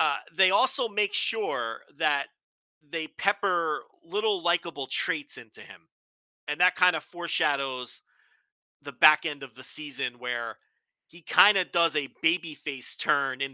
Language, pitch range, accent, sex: English, 135-200 Hz, American, male